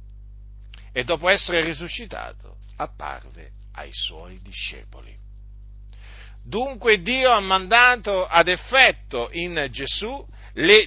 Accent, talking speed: native, 95 wpm